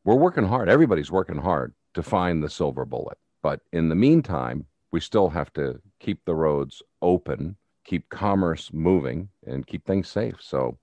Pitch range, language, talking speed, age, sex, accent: 80-100 Hz, English, 170 wpm, 50-69, male, American